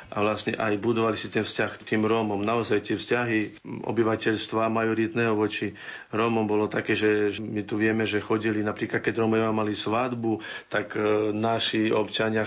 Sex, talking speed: male, 155 wpm